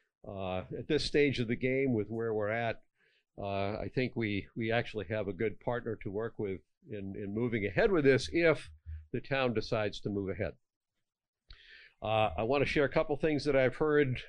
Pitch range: 110-140 Hz